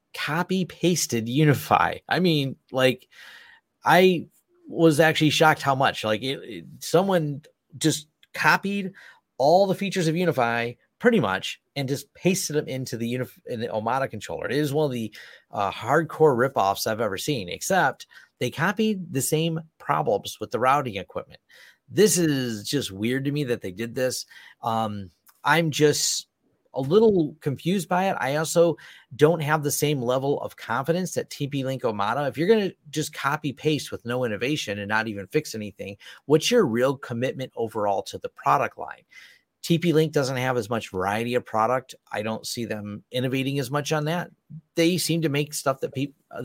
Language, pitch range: English, 120-160 Hz